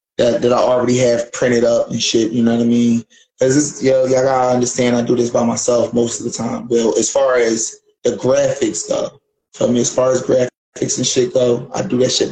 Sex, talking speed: male, 240 wpm